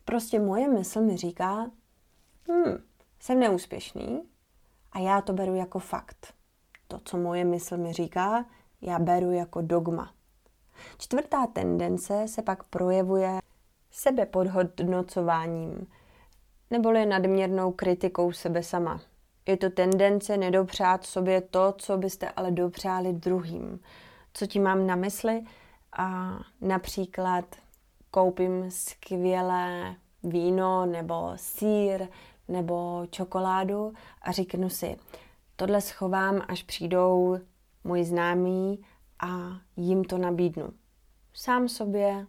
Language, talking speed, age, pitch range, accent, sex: Czech, 105 wpm, 20-39, 180-195 Hz, native, female